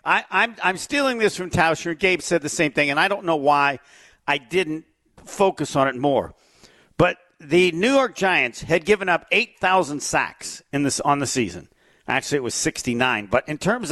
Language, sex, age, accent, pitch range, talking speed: English, male, 50-69, American, 150-220 Hz, 200 wpm